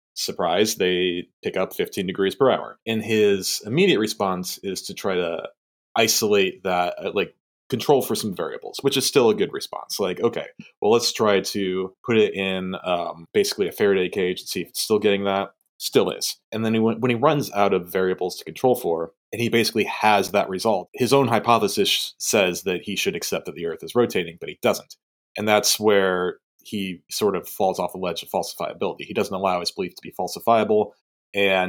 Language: English